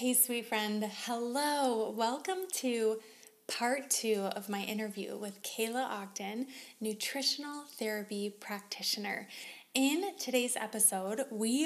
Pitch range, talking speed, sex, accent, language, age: 215-270 Hz, 110 wpm, female, American, English, 20-39